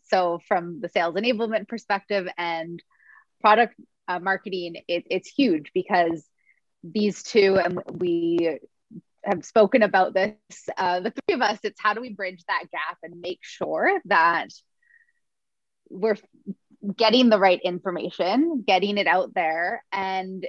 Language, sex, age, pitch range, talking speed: English, female, 20-39, 180-230 Hz, 140 wpm